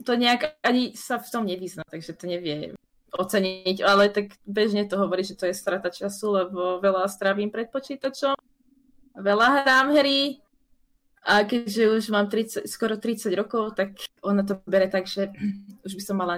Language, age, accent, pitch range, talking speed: Czech, 20-39, native, 185-260 Hz, 170 wpm